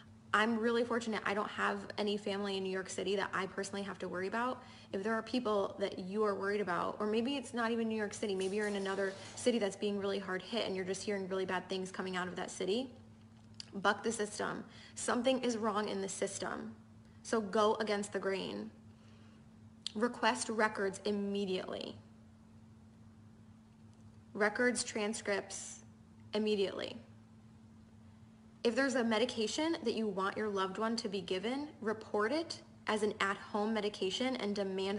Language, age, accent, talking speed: English, 10-29, American, 170 wpm